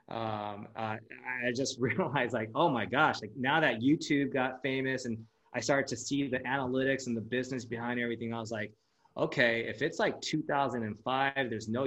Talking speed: 185 wpm